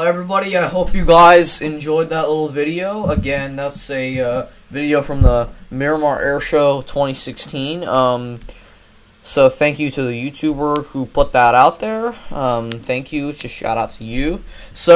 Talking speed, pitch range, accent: 170 wpm, 130-155 Hz, American